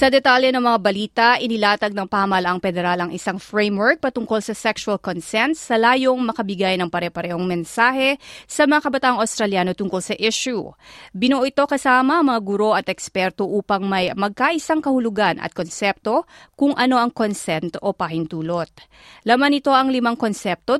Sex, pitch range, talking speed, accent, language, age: female, 185-245 Hz, 150 wpm, native, Filipino, 30-49